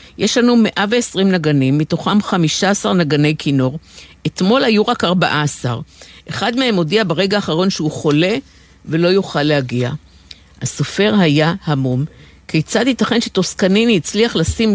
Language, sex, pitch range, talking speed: Hebrew, female, 150-210 Hz, 120 wpm